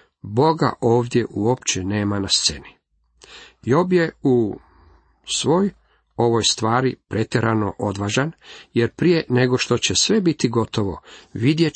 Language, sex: Croatian, male